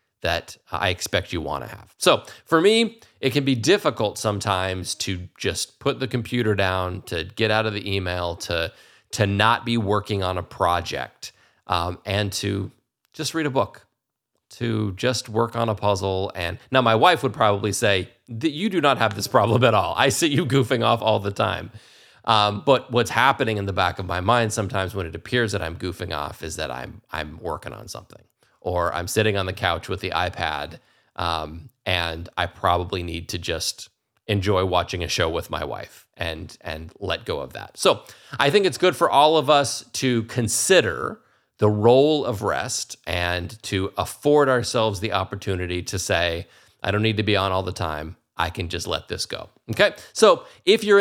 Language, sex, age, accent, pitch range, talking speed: English, male, 30-49, American, 90-120 Hz, 200 wpm